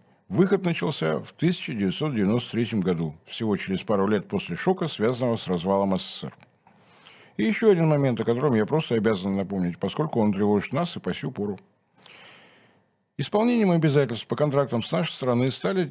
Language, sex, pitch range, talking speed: Russian, male, 110-170 Hz, 155 wpm